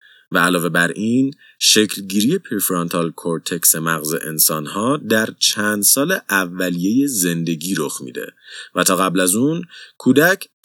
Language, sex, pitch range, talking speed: Persian, male, 85-130 Hz, 135 wpm